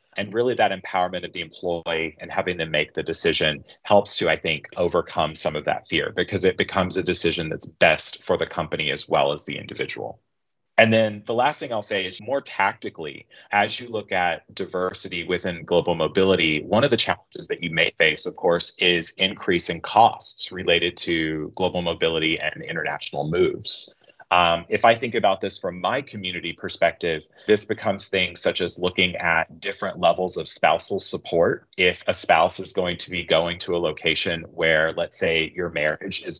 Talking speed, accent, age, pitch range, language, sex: 190 wpm, American, 30-49, 90-105 Hz, English, male